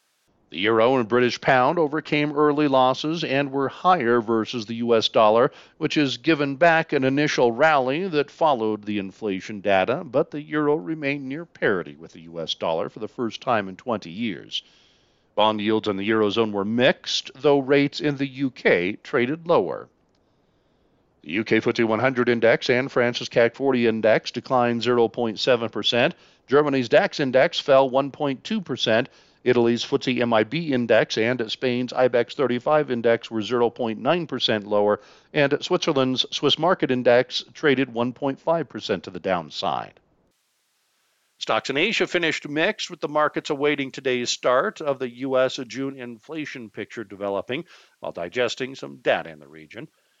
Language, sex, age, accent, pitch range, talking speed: English, male, 50-69, American, 115-145 Hz, 145 wpm